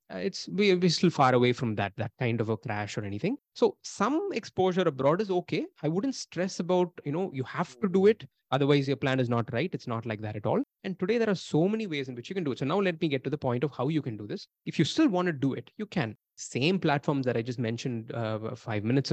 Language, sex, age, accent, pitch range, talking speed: English, male, 20-39, Indian, 115-170 Hz, 280 wpm